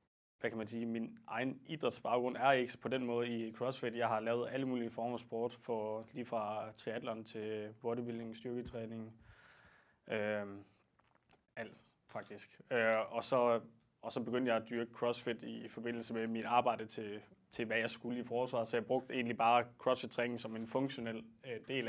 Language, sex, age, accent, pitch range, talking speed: Danish, male, 20-39, native, 115-125 Hz, 175 wpm